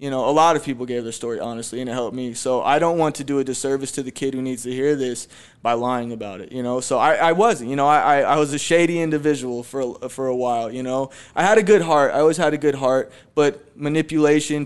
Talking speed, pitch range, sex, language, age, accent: 280 wpm, 130-150 Hz, male, English, 20-39, American